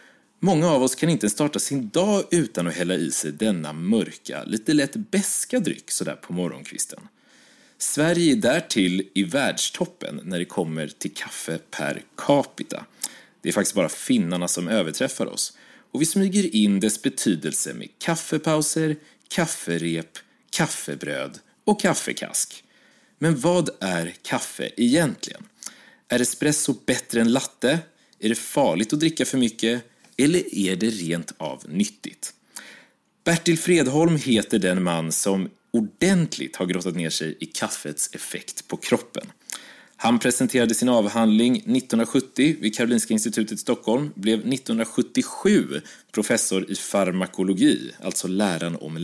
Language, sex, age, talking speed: Swedish, male, 30-49, 135 wpm